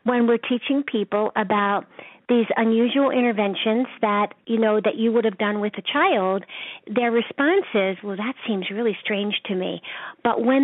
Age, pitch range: 50-69, 205-235 Hz